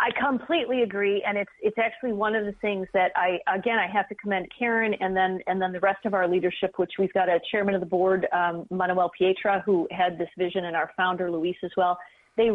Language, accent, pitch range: English, American, 185-225 Hz